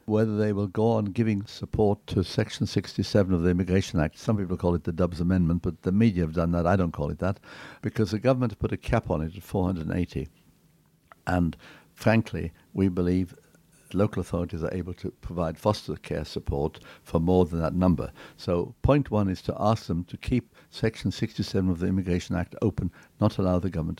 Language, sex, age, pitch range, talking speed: English, male, 70-89, 90-110 Hz, 200 wpm